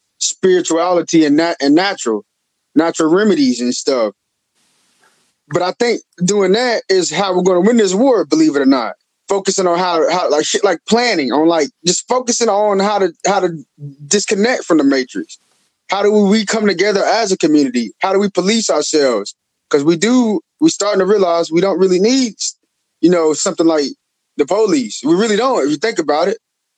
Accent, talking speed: American, 190 wpm